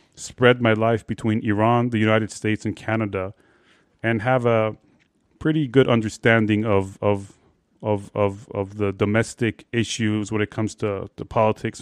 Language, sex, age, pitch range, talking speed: Persian, male, 30-49, 105-120 Hz, 150 wpm